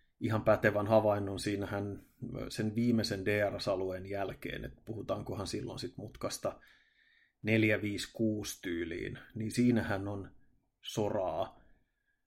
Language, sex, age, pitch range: Finnish, male, 30-49, 105-115 Hz